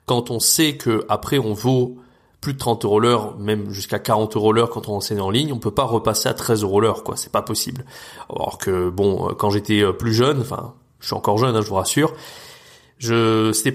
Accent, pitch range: French, 105-125 Hz